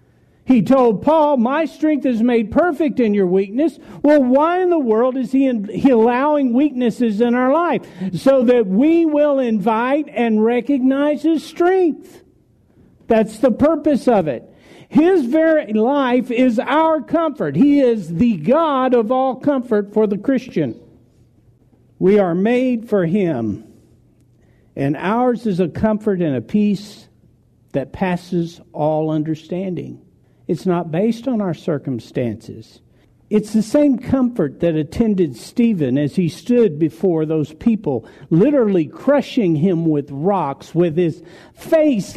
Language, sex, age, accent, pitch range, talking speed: English, male, 50-69, American, 180-270 Hz, 140 wpm